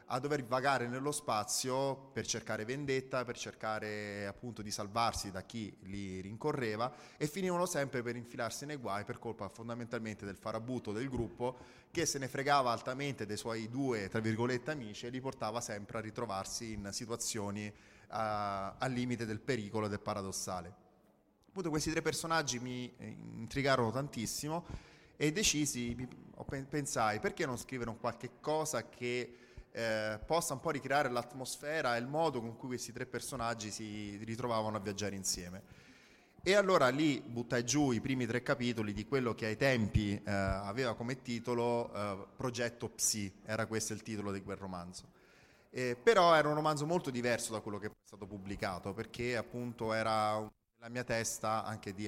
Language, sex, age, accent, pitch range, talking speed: Italian, male, 30-49, native, 105-130 Hz, 165 wpm